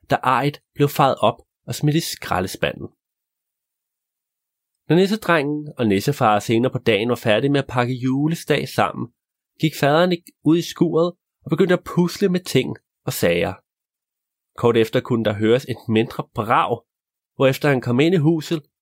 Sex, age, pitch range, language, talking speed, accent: male, 30-49, 125-170 Hz, Danish, 160 wpm, native